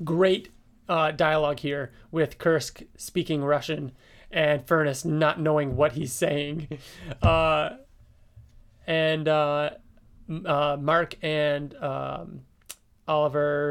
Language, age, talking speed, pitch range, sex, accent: English, 30-49, 100 wpm, 135-165 Hz, male, American